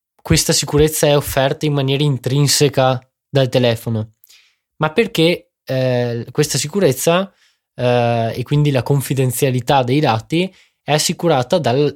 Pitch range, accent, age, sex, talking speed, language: 125-150 Hz, native, 20-39, male, 115 wpm, Italian